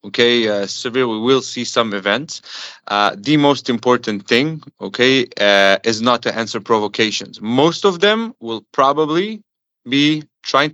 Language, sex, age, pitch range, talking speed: English, male, 30-49, 110-145 Hz, 150 wpm